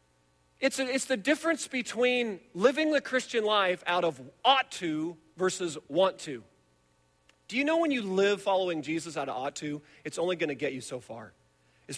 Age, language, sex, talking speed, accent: 40-59, English, male, 185 wpm, American